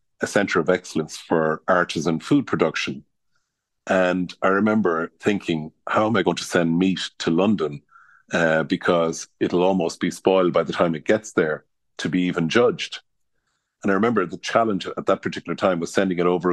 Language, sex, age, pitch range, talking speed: English, male, 50-69, 80-95 Hz, 180 wpm